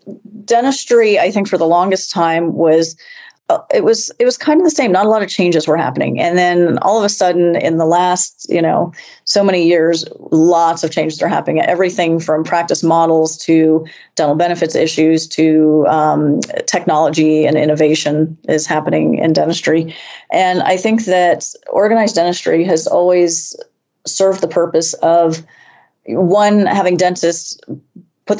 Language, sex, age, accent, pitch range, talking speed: English, female, 30-49, American, 160-180 Hz, 160 wpm